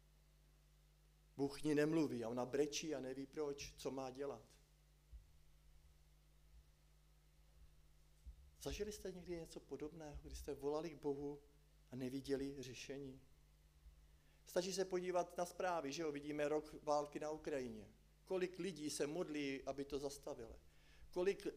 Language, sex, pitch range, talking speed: Czech, male, 125-155 Hz, 125 wpm